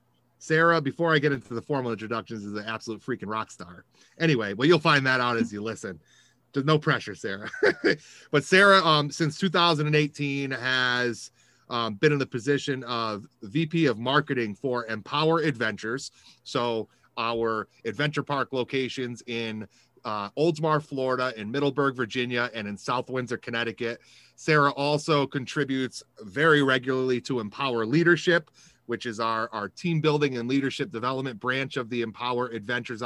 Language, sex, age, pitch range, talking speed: English, male, 30-49, 115-150 Hz, 150 wpm